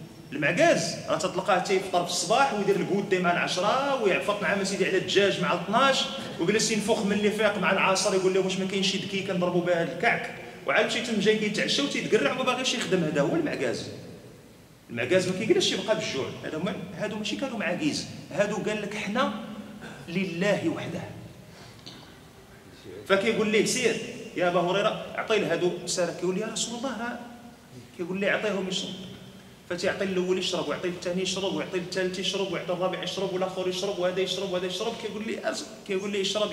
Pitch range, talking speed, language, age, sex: 175-210 Hz, 165 wpm, Arabic, 40-59, male